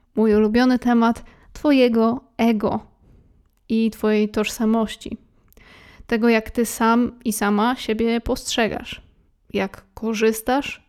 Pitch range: 220-245 Hz